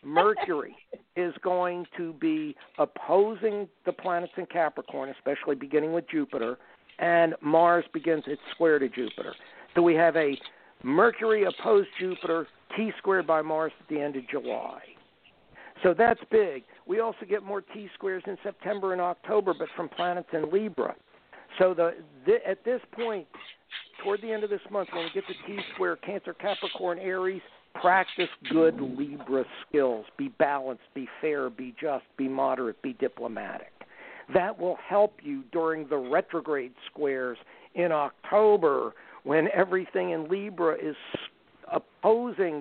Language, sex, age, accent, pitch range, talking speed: English, male, 60-79, American, 160-205 Hz, 150 wpm